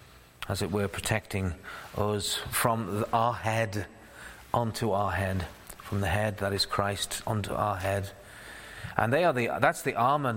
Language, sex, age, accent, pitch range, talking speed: English, male, 40-59, British, 100-120 Hz, 155 wpm